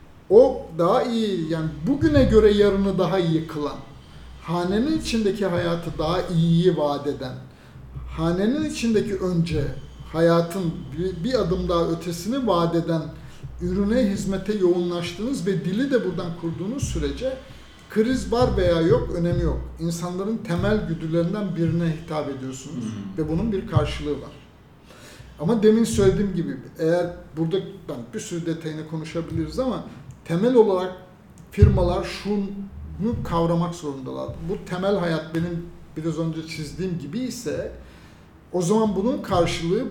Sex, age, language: male, 50-69, Turkish